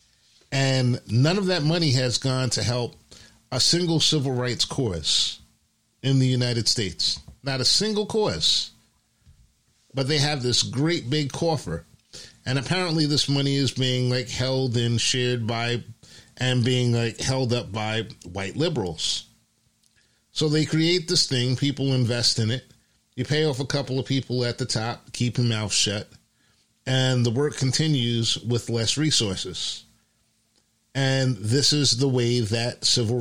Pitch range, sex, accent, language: 115-145 Hz, male, American, English